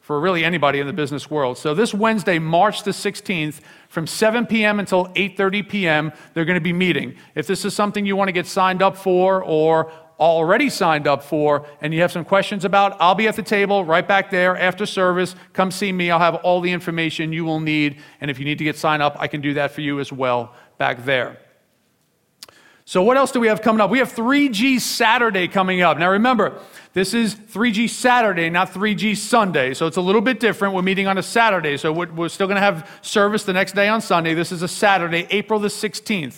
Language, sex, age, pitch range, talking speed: English, male, 40-59, 165-215 Hz, 225 wpm